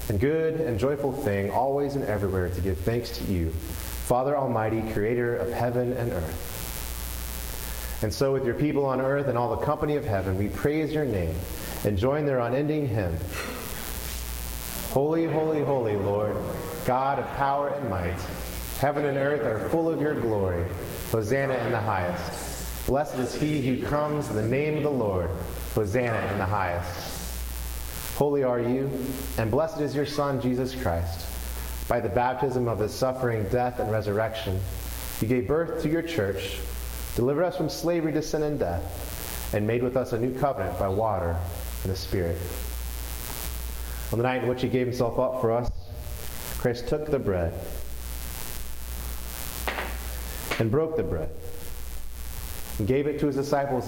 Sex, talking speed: male, 165 wpm